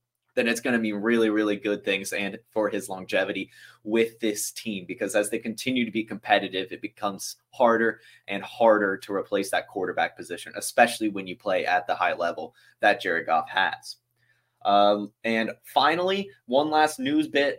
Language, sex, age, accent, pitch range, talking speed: English, male, 20-39, American, 110-130 Hz, 175 wpm